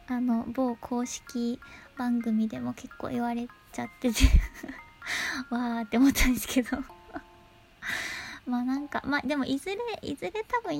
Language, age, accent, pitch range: Japanese, 20-39, native, 245-320 Hz